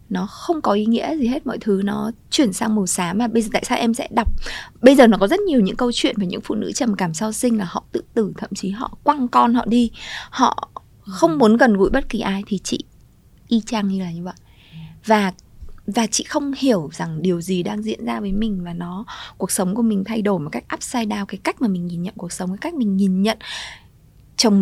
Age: 20-39